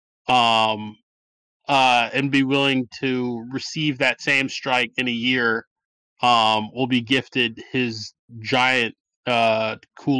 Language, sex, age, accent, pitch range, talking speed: English, male, 20-39, American, 120-150 Hz, 125 wpm